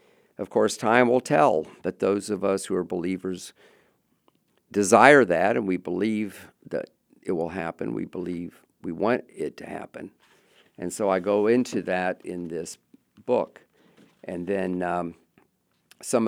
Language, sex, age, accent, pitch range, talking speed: English, male, 50-69, American, 95-115 Hz, 150 wpm